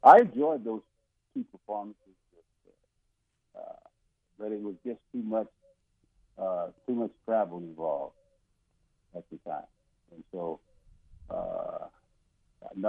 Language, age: English, 60-79